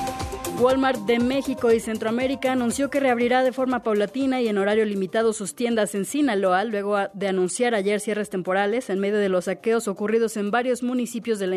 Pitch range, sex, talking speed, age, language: 200-245 Hz, female, 185 wpm, 20-39, Spanish